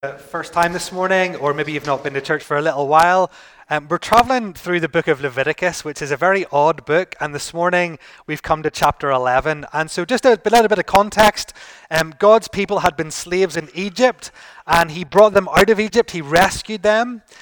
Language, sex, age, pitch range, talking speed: English, male, 30-49, 150-195 Hz, 215 wpm